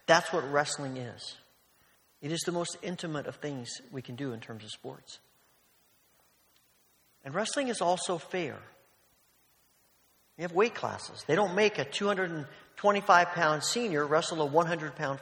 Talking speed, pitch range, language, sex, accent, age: 150 wpm, 135-180 Hz, English, male, American, 40-59